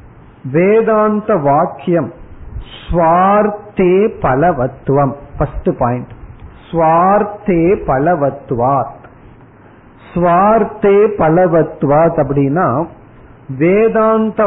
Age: 50-69